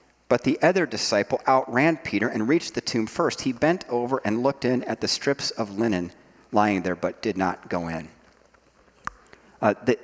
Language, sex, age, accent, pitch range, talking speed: English, male, 40-59, American, 85-135 Hz, 185 wpm